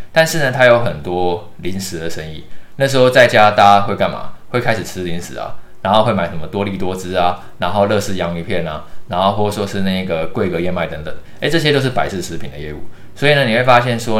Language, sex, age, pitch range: Chinese, male, 20-39, 90-120 Hz